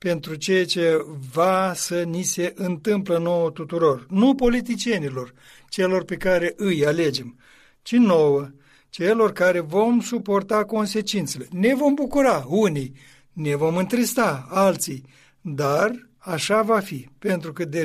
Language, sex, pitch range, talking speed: Romanian, male, 145-205 Hz, 130 wpm